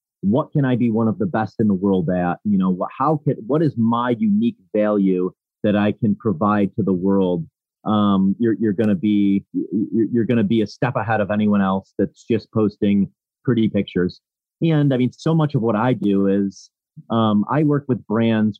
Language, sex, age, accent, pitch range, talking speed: English, male, 30-49, American, 100-115 Hz, 200 wpm